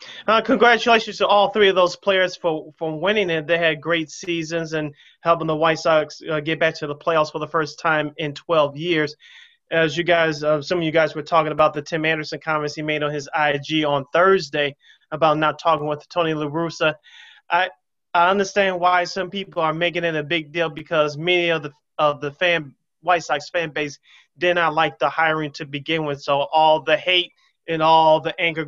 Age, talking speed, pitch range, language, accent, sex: 20-39, 215 wpm, 150-180 Hz, English, American, male